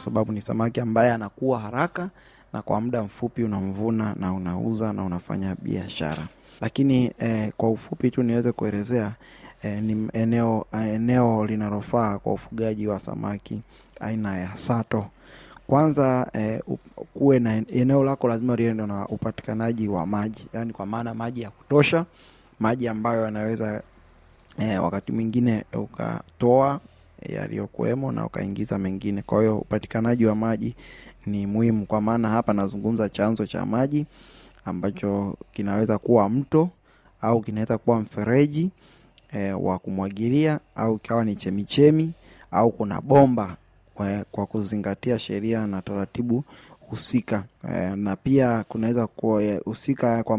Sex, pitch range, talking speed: male, 100-120 Hz, 130 wpm